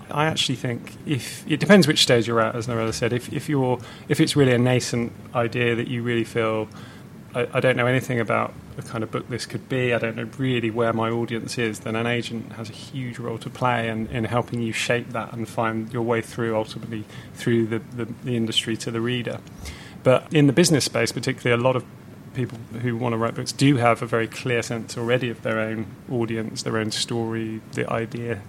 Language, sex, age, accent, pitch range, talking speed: English, male, 30-49, British, 115-125 Hz, 225 wpm